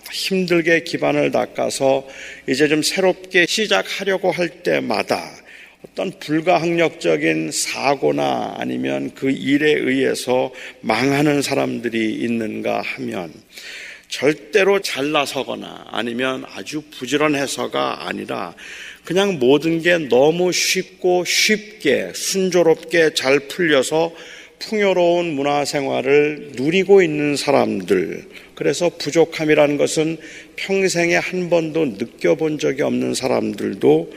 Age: 40-59